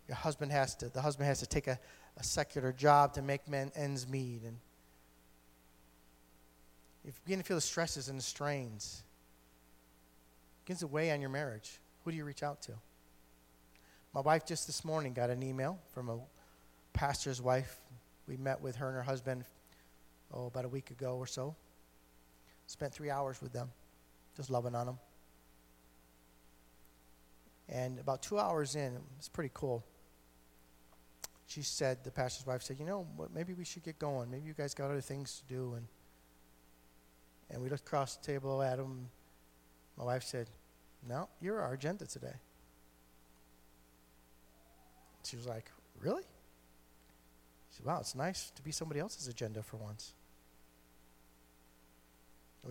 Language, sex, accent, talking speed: English, male, American, 160 wpm